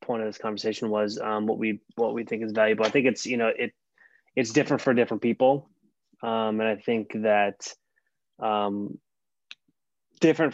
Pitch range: 105-120 Hz